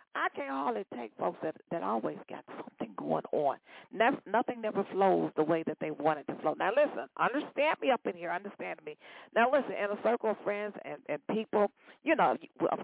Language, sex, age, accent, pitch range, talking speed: English, female, 40-59, American, 175-250 Hz, 215 wpm